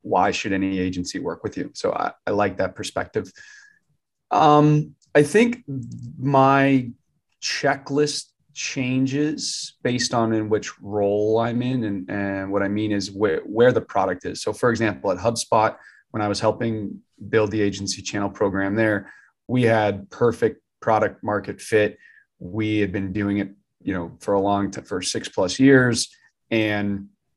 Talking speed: 160 wpm